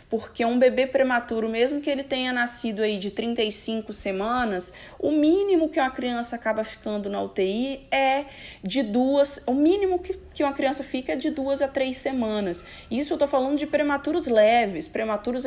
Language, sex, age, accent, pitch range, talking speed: Portuguese, female, 20-39, Brazilian, 215-275 Hz, 175 wpm